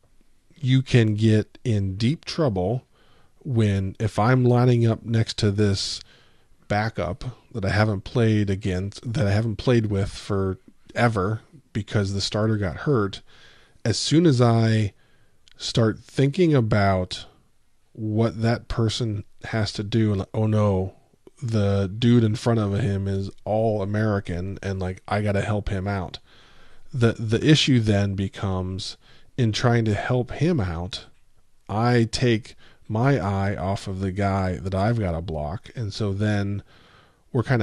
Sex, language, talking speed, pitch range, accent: male, English, 150 wpm, 100-115 Hz, American